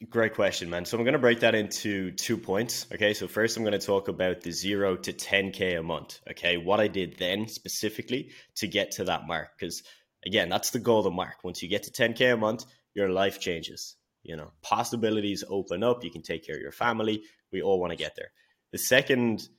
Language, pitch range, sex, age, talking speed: English, 95-115 Hz, male, 10-29, 225 wpm